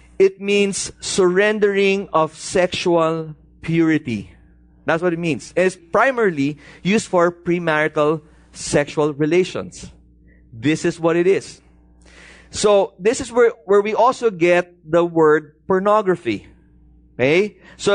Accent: Filipino